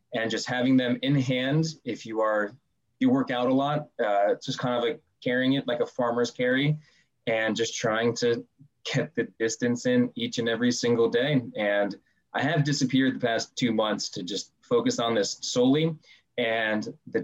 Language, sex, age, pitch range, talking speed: English, male, 20-39, 110-155 Hz, 190 wpm